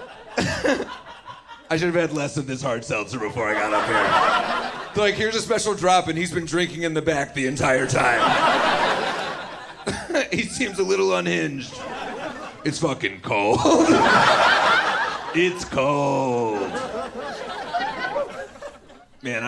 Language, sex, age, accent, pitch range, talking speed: English, male, 30-49, American, 140-195 Hz, 125 wpm